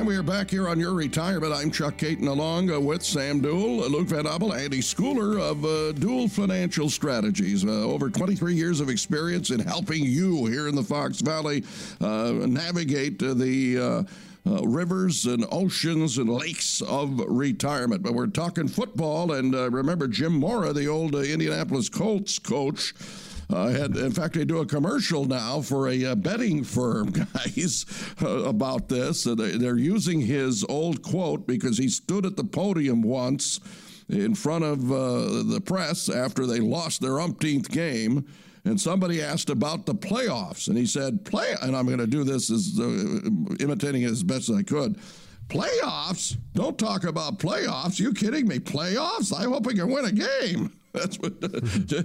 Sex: male